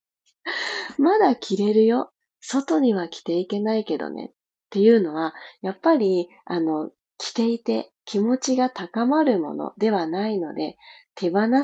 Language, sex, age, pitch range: Japanese, female, 40-59, 175-270 Hz